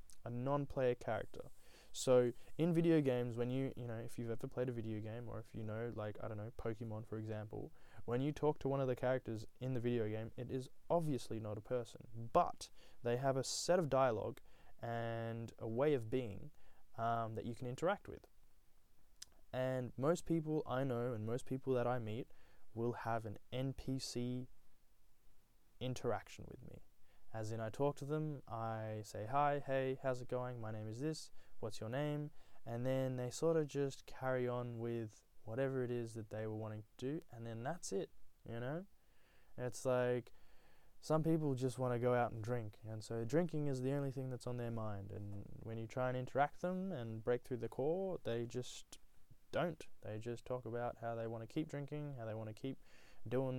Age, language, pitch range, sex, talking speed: 20-39, English, 115-130 Hz, male, 200 wpm